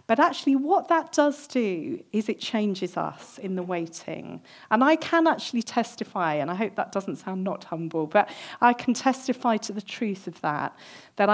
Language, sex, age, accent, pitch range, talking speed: English, female, 40-59, British, 190-255 Hz, 190 wpm